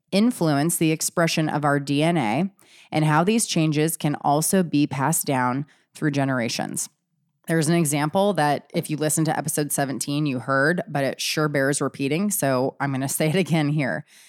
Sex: female